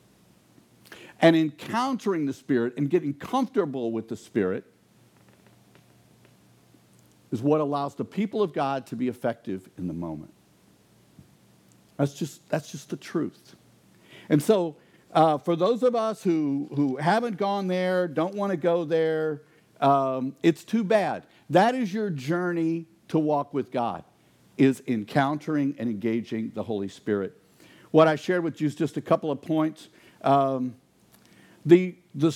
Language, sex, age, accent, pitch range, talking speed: English, male, 50-69, American, 135-185 Hz, 145 wpm